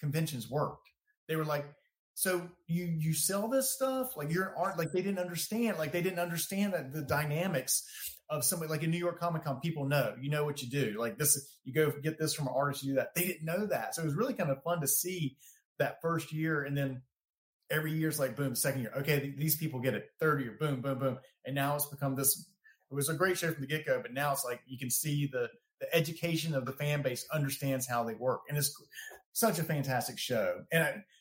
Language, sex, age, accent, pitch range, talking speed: English, male, 30-49, American, 130-160 Hz, 240 wpm